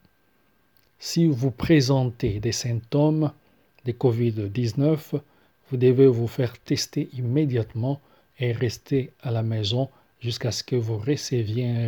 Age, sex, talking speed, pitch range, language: 40-59, male, 120 wpm, 115-140 Hz, English